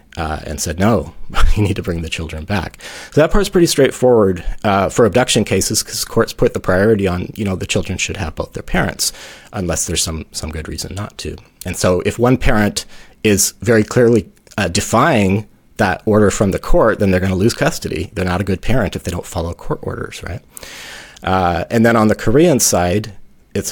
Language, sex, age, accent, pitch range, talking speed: English, male, 30-49, American, 90-115 Hz, 215 wpm